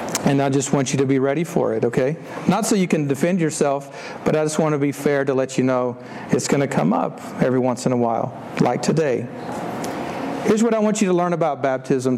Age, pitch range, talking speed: 50-69, 190-260 Hz, 240 wpm